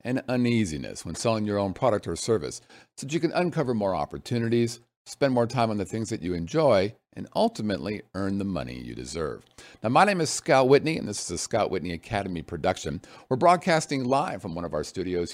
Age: 50-69